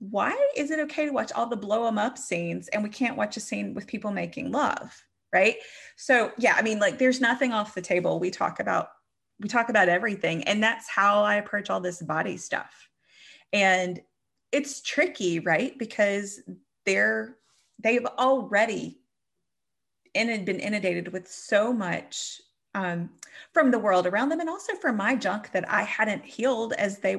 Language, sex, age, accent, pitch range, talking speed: English, female, 30-49, American, 185-245 Hz, 180 wpm